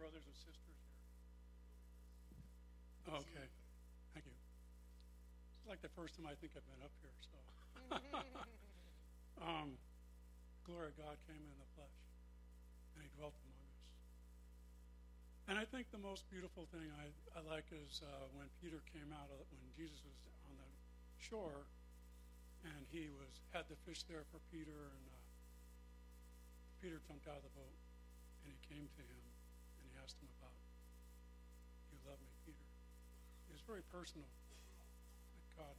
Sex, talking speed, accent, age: male, 150 wpm, American, 50-69